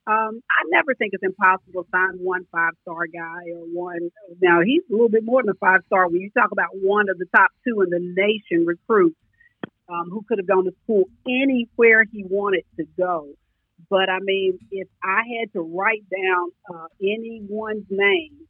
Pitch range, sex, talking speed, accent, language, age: 180-215 Hz, female, 200 wpm, American, English, 40-59